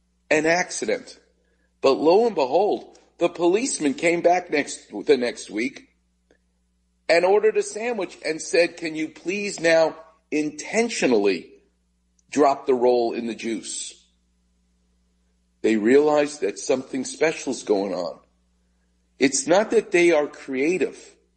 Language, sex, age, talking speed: English, male, 50-69, 125 wpm